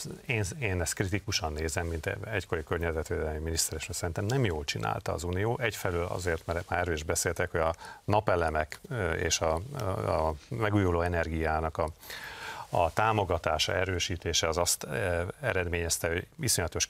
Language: Hungarian